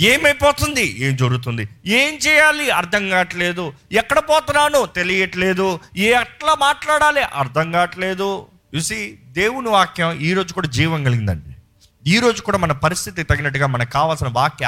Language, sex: Telugu, male